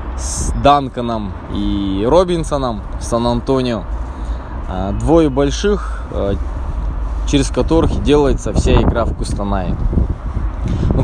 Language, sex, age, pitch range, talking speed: Russian, male, 20-39, 90-140 Hz, 85 wpm